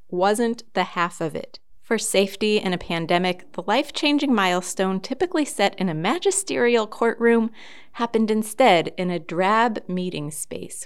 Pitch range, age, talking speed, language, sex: 175-240 Hz, 30-49, 145 wpm, English, female